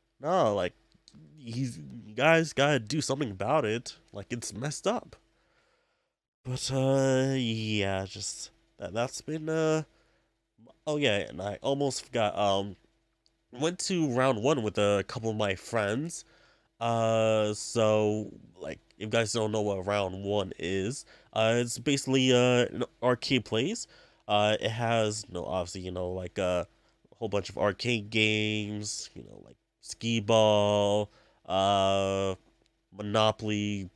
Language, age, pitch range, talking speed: English, 20-39, 105-135 Hz, 145 wpm